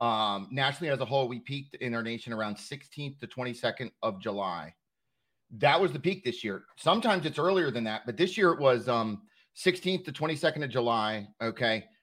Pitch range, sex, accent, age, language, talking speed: 115-155 Hz, male, American, 30-49, English, 195 wpm